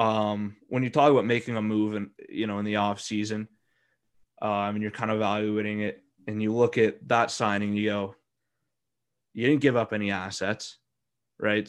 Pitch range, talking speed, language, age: 105-115 Hz, 190 wpm, English, 20-39